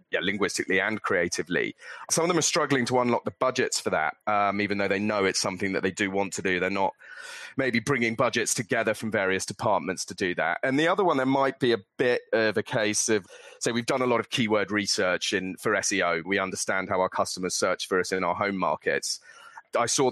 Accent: British